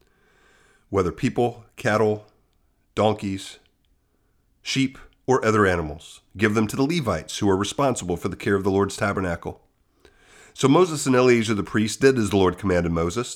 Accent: American